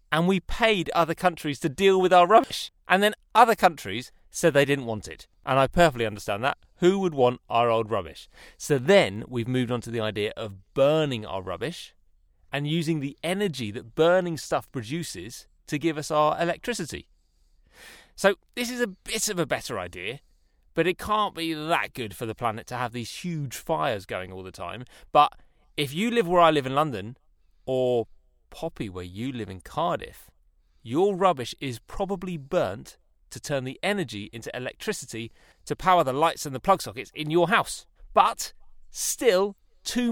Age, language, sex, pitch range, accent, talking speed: 30-49, English, male, 110-175 Hz, British, 185 wpm